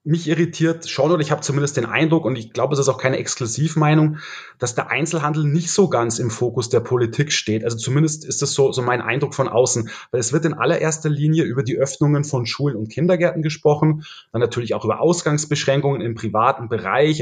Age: 30-49